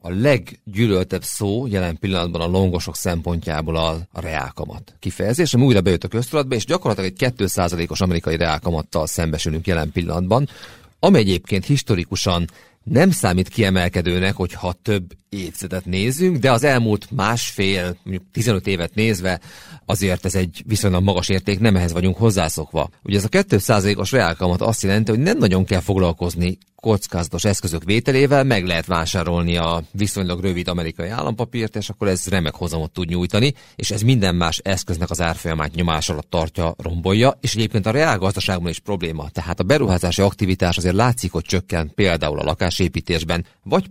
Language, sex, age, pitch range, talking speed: Hungarian, male, 40-59, 85-110 Hz, 150 wpm